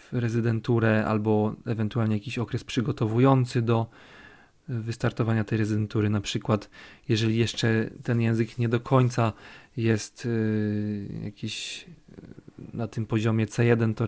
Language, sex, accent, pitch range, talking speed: Polish, male, native, 105-120 Hz, 110 wpm